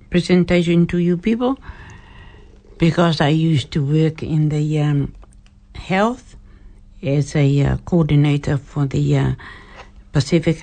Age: 60-79